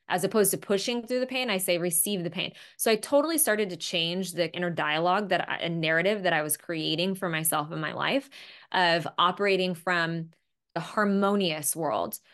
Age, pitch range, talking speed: 20-39, 170-205 Hz, 190 wpm